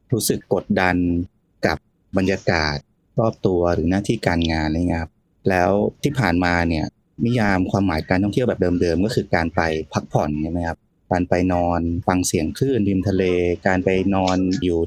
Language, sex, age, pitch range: Thai, male, 20-39, 85-105 Hz